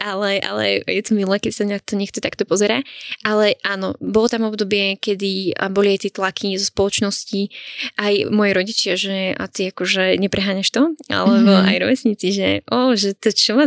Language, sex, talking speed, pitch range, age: Slovak, female, 175 wpm, 195-220 Hz, 10-29